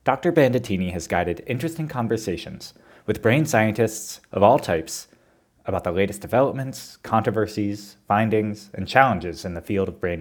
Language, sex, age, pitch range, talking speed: English, male, 30-49, 90-115 Hz, 145 wpm